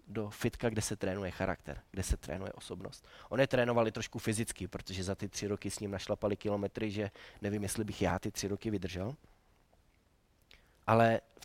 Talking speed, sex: 180 wpm, male